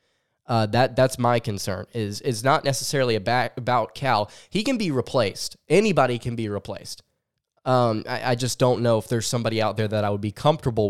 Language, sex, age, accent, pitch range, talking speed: English, male, 10-29, American, 110-125 Hz, 205 wpm